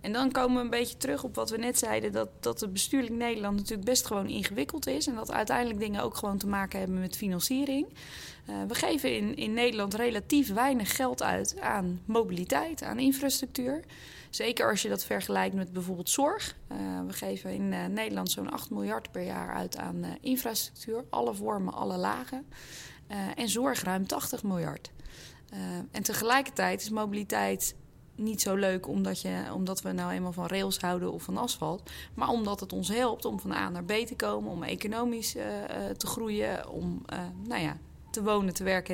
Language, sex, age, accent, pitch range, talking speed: Dutch, female, 20-39, Dutch, 180-250 Hz, 195 wpm